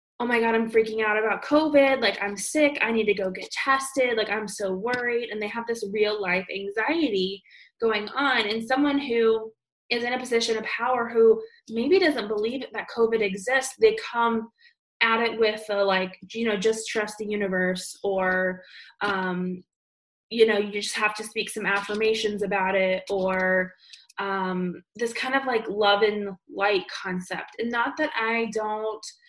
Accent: American